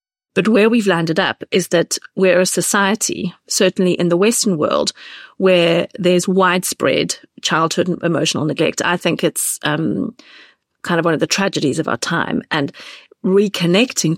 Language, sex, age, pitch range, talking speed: English, female, 40-59, 165-200 Hz, 150 wpm